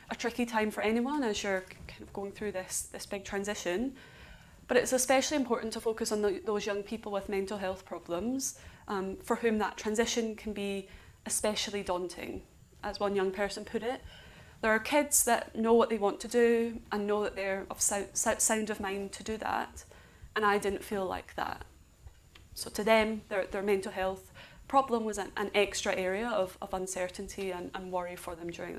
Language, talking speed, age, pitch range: English, 200 wpm, 20-39, 195-225 Hz